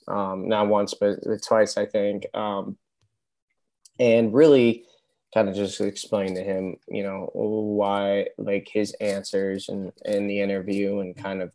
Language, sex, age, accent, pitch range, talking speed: English, male, 20-39, American, 100-115 Hz, 155 wpm